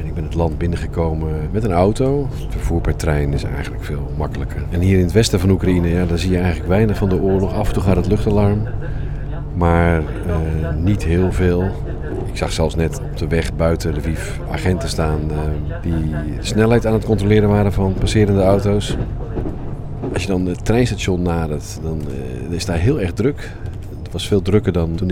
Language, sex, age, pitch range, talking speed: Dutch, male, 40-59, 80-95 Hz, 200 wpm